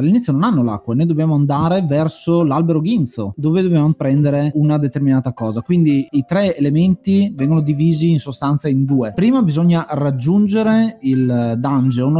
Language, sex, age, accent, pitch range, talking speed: Italian, male, 20-39, native, 125-165 Hz, 150 wpm